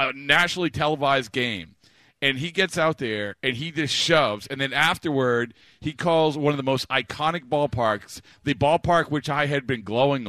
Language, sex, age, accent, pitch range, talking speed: English, male, 40-59, American, 135-180 Hz, 180 wpm